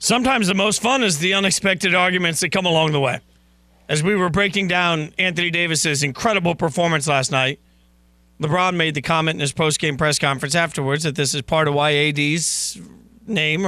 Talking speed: 185 wpm